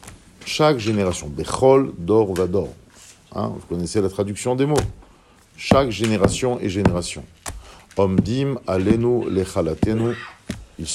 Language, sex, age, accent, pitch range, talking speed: French, male, 50-69, French, 90-115 Hz, 105 wpm